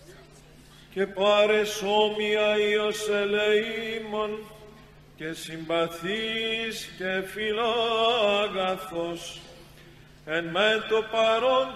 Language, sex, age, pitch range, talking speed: Greek, male, 40-59, 165-225 Hz, 60 wpm